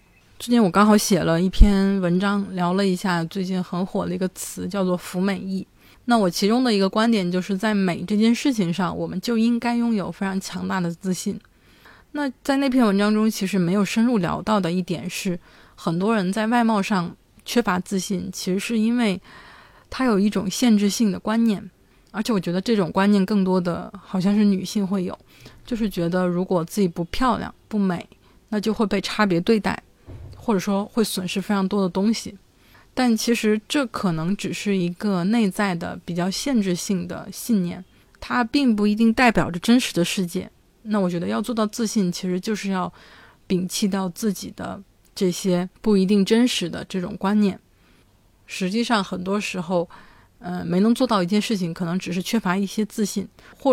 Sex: female